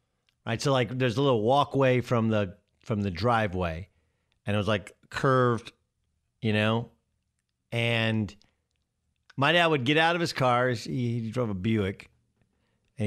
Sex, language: male, English